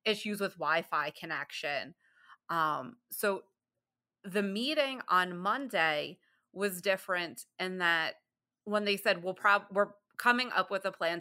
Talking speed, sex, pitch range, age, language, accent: 125 wpm, female, 165-195 Hz, 30-49, English, American